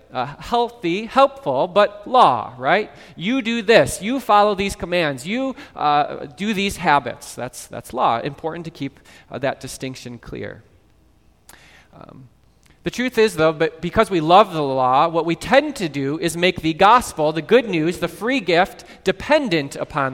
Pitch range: 145-195 Hz